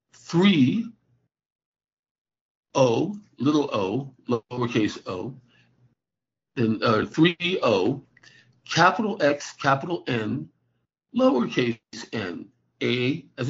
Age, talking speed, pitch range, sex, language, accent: 50-69, 80 wpm, 120-150 Hz, male, English, American